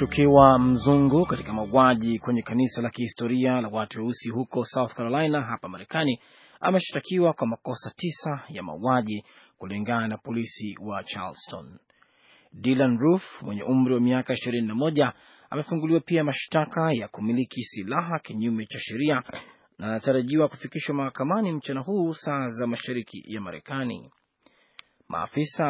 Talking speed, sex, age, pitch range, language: 130 wpm, male, 30-49, 120-155 Hz, Swahili